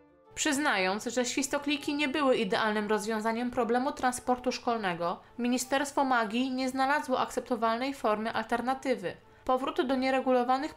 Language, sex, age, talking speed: Polish, female, 20-39, 110 wpm